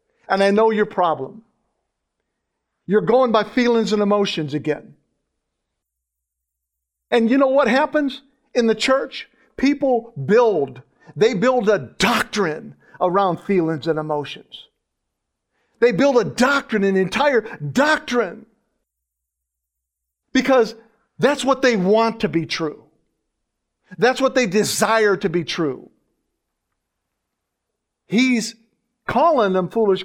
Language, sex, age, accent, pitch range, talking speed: English, male, 50-69, American, 155-225 Hz, 110 wpm